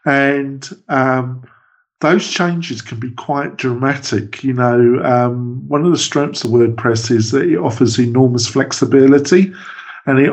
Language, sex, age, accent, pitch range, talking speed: English, male, 50-69, British, 115-140 Hz, 145 wpm